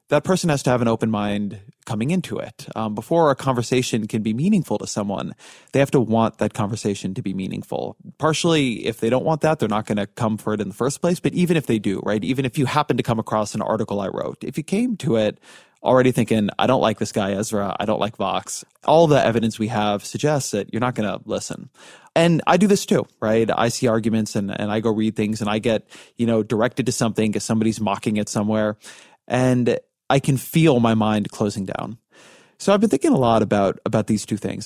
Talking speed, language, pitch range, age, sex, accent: 240 wpm, English, 105-135 Hz, 20-39, male, American